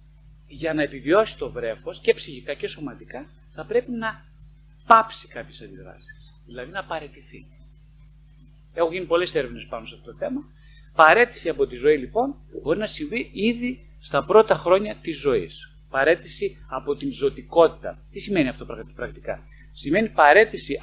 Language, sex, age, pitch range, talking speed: Greek, male, 40-59, 150-225 Hz, 145 wpm